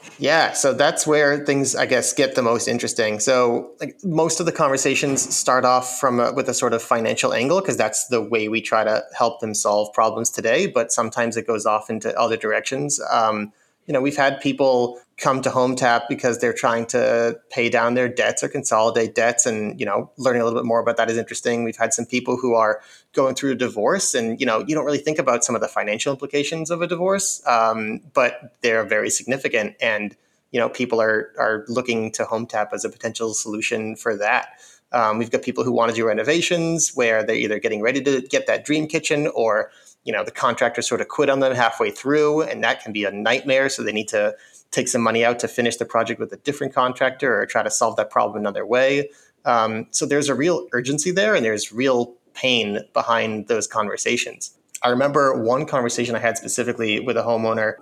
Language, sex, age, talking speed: English, male, 30-49, 220 wpm